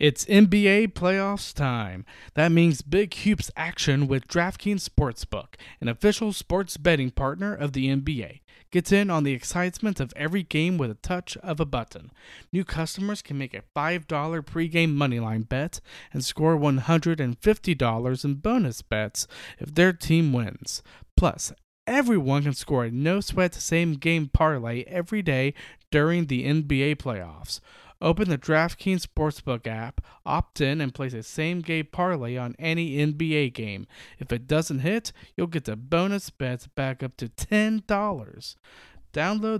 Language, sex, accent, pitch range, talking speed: English, male, American, 130-180 Hz, 145 wpm